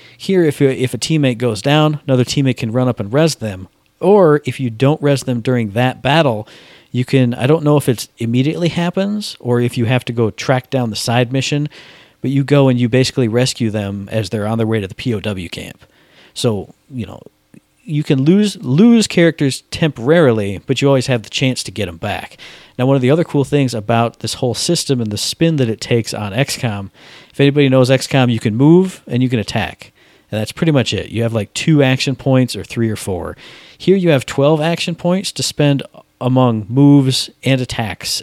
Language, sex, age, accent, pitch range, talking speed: English, male, 40-59, American, 115-145 Hz, 215 wpm